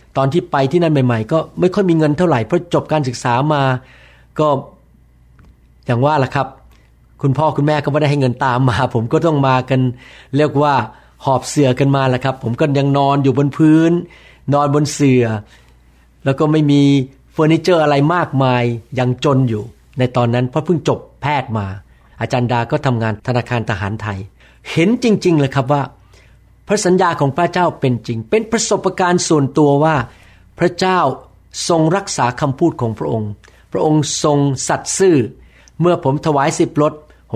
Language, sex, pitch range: Thai, male, 120-165 Hz